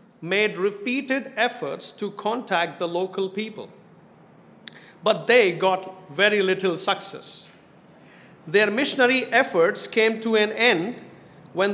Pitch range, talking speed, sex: 180-230 Hz, 110 wpm, male